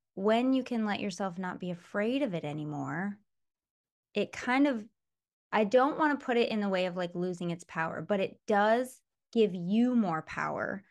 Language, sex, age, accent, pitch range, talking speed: English, female, 10-29, American, 175-210 Hz, 195 wpm